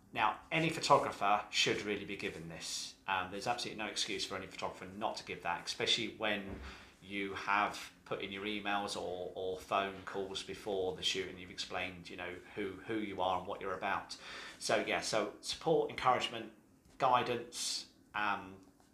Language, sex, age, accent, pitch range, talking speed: English, male, 30-49, British, 100-120 Hz, 175 wpm